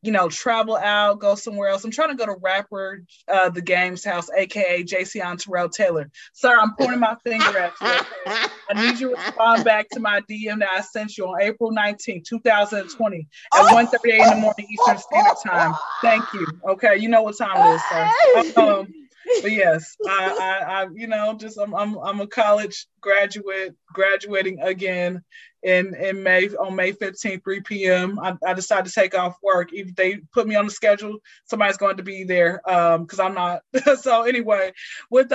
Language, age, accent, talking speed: English, 20-39, American, 200 wpm